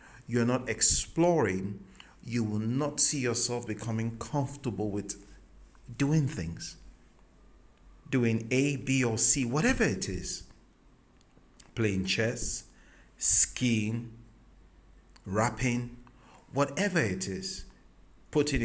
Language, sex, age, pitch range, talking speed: English, male, 50-69, 95-135 Hz, 95 wpm